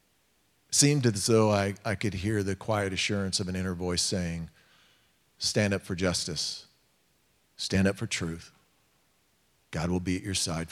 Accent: American